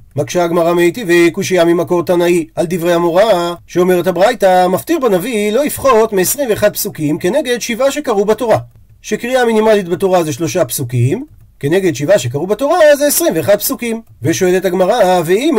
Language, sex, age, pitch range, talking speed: Hebrew, male, 40-59, 160-220 Hz, 140 wpm